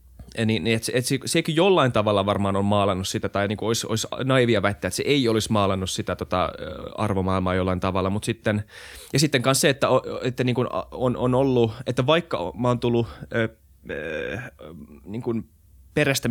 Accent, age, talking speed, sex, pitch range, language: native, 20-39, 195 wpm, male, 105-130 Hz, Finnish